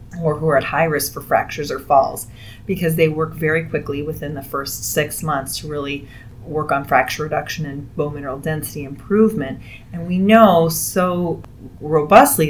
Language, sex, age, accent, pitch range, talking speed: English, female, 30-49, American, 145-165 Hz, 175 wpm